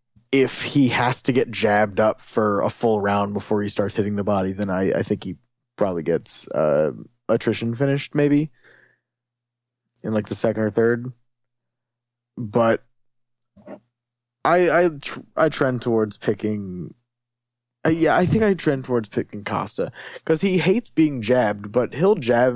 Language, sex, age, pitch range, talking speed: English, male, 20-39, 110-130 Hz, 155 wpm